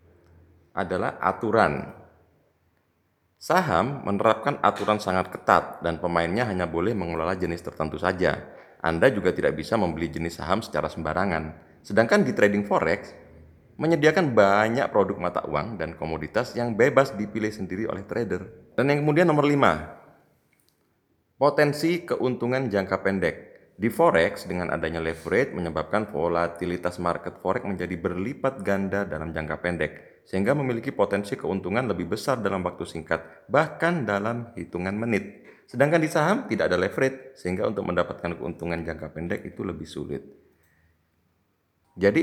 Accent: native